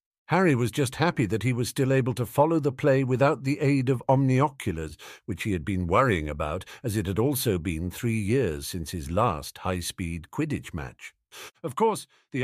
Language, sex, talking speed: English, male, 195 wpm